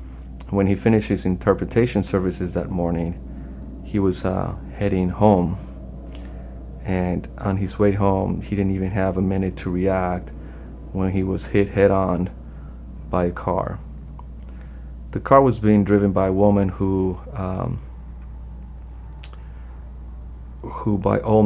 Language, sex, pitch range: English, male, 65-100 Hz